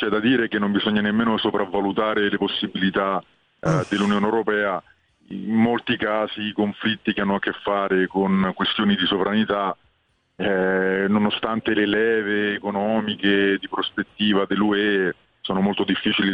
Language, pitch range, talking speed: Italian, 95-110 Hz, 140 wpm